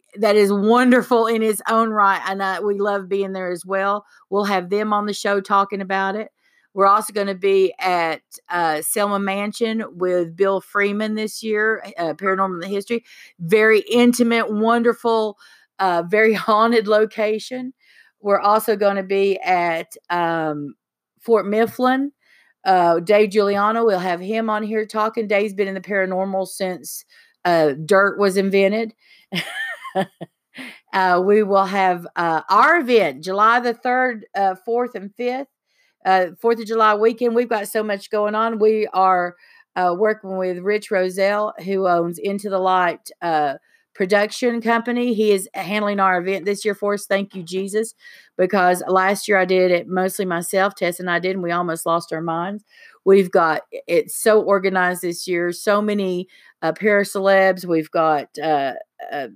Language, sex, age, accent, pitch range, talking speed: English, female, 50-69, American, 185-220 Hz, 165 wpm